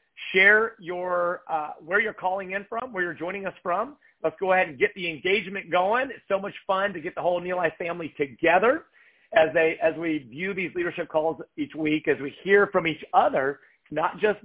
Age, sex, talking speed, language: 40-59, male, 210 wpm, English